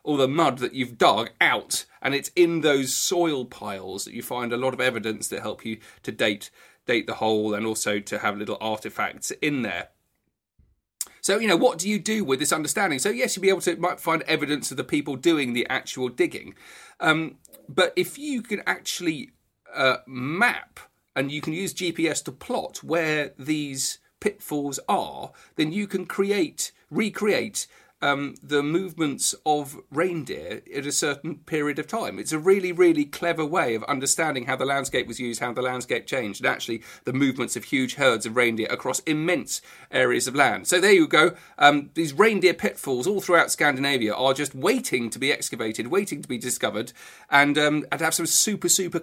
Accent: British